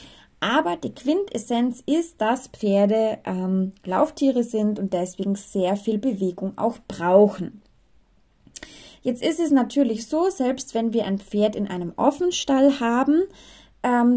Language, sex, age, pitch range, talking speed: German, female, 20-39, 205-280 Hz, 130 wpm